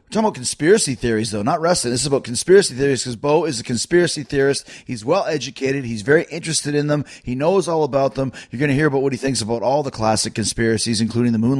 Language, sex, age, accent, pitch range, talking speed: English, male, 30-49, American, 125-175 Hz, 245 wpm